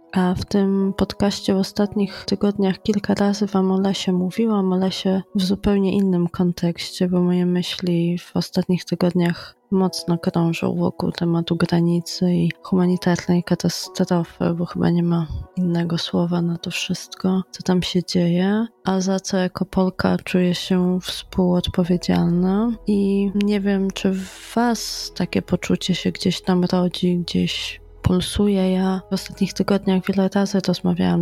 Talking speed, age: 145 wpm, 20-39